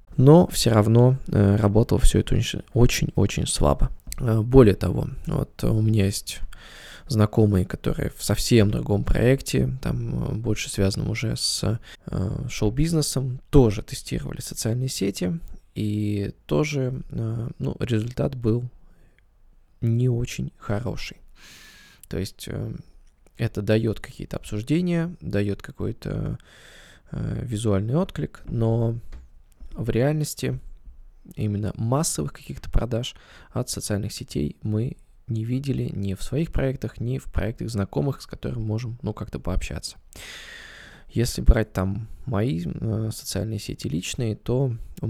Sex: male